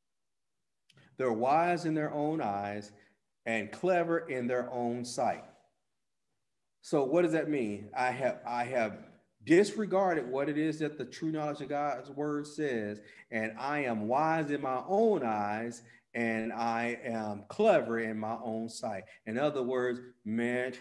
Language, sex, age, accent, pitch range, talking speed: English, male, 40-59, American, 115-145 Hz, 155 wpm